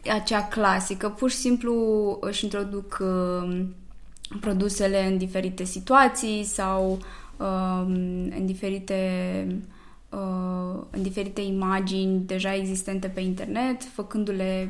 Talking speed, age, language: 85 wpm, 20-39, Romanian